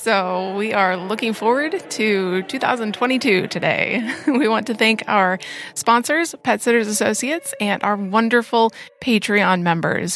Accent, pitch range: American, 190-230 Hz